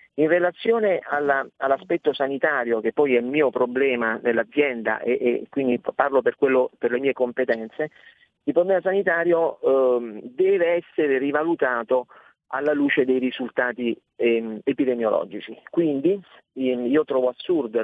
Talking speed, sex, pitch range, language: 135 wpm, male, 125-150 Hz, Italian